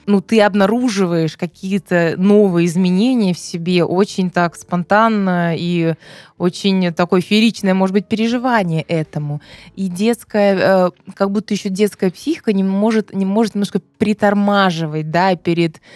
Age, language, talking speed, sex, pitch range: 20-39, Russian, 130 wpm, female, 165-195 Hz